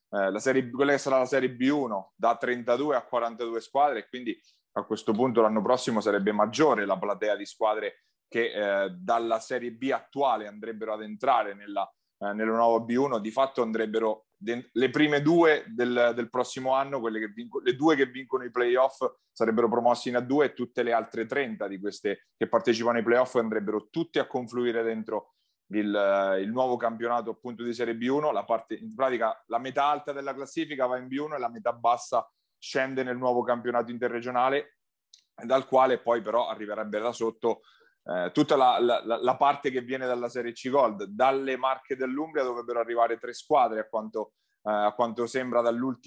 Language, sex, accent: Italian, male, native